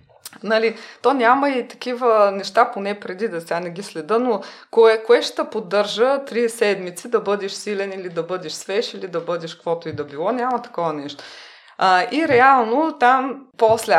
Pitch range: 195-255 Hz